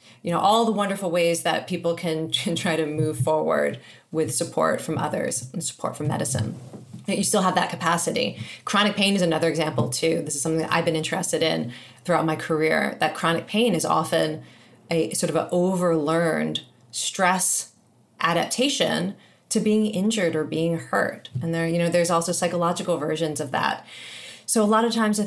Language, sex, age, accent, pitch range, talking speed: English, female, 30-49, American, 160-185 Hz, 185 wpm